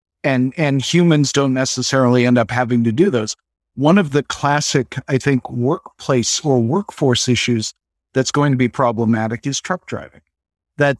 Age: 50-69